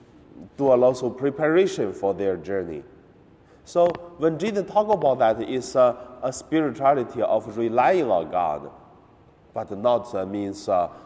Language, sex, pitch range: Chinese, male, 90-130 Hz